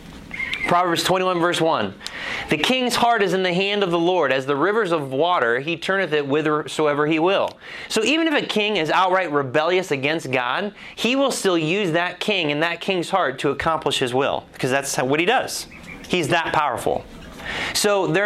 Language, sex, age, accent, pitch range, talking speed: English, male, 30-49, American, 150-200 Hz, 195 wpm